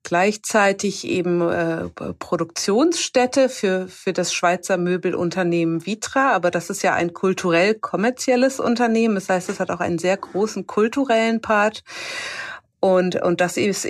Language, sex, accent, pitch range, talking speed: German, female, German, 180-230 Hz, 135 wpm